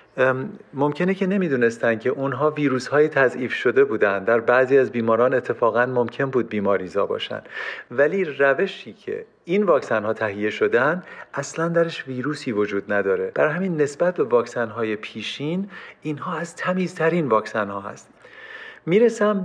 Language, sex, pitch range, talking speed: Persian, male, 120-195 Hz, 140 wpm